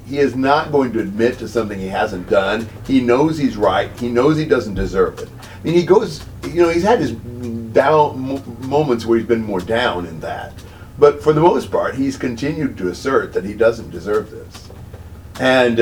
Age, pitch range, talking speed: 50-69, 95-115 Hz, 205 wpm